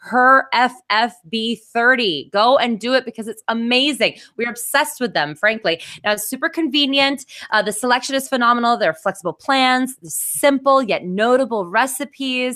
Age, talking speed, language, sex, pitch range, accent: 20-39, 155 wpm, English, female, 185-265 Hz, American